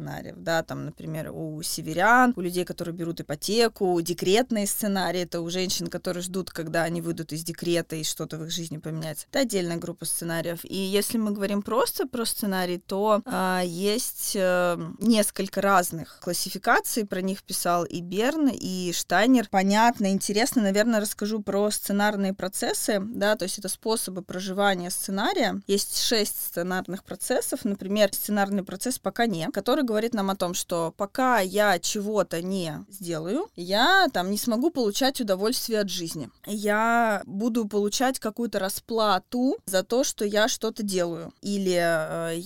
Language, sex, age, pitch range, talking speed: Russian, female, 20-39, 180-220 Hz, 155 wpm